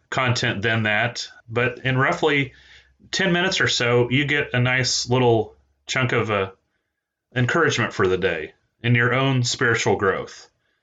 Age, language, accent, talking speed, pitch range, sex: 30-49, English, American, 150 wpm, 115-130 Hz, male